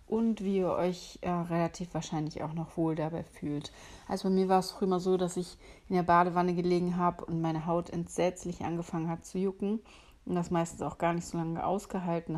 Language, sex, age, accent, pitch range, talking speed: German, female, 30-49, German, 165-180 Hz, 215 wpm